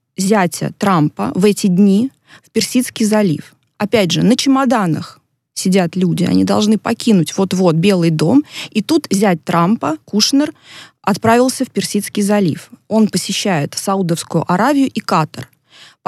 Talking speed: 135 wpm